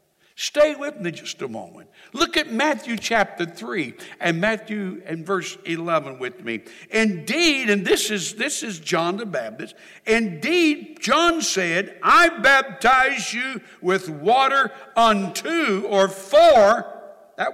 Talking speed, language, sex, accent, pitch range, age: 135 wpm, English, male, American, 175-265 Hz, 60-79